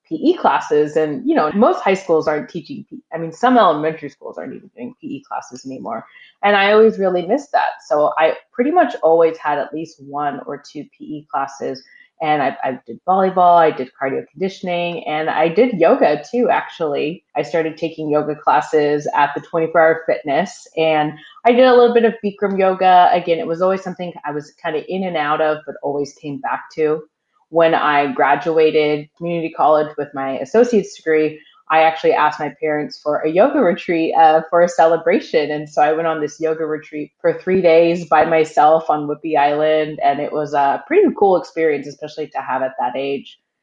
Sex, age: female, 20-39